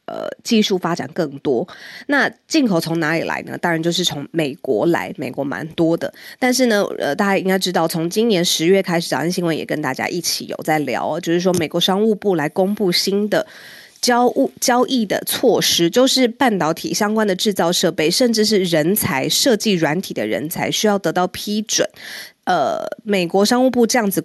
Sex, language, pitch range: female, Chinese, 165-230 Hz